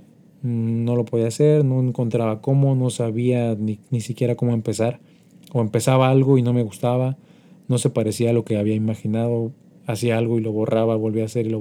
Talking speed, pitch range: 200 wpm, 115-145 Hz